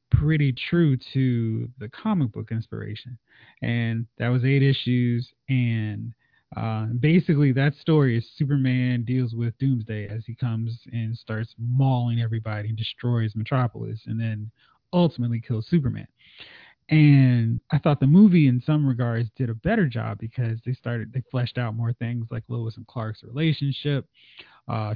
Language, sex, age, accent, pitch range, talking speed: English, male, 20-39, American, 115-140 Hz, 150 wpm